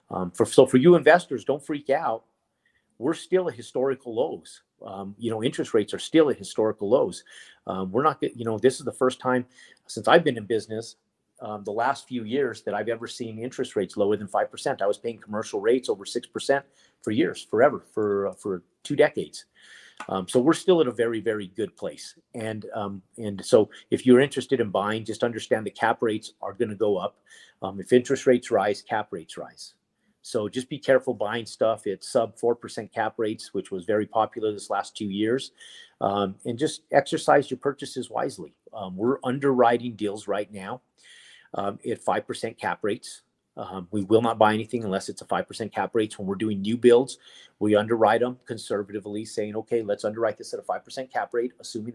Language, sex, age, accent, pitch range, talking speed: English, male, 40-59, American, 105-130 Hz, 200 wpm